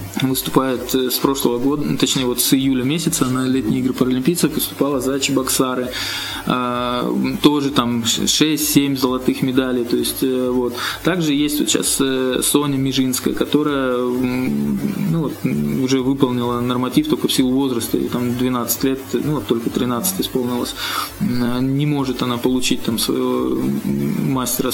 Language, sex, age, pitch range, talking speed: Russian, male, 20-39, 125-145 Hz, 135 wpm